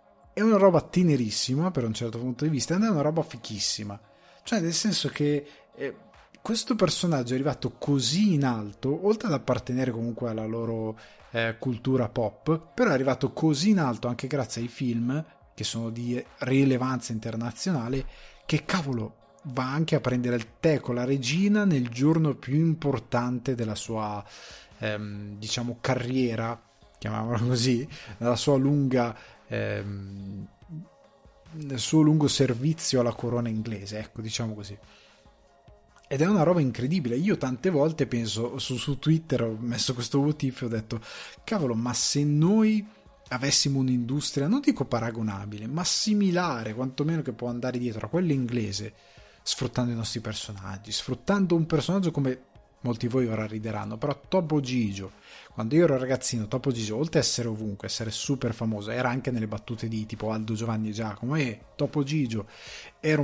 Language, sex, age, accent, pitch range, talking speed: Italian, male, 20-39, native, 115-145 Hz, 160 wpm